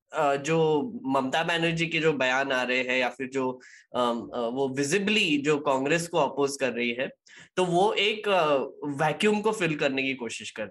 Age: 10-29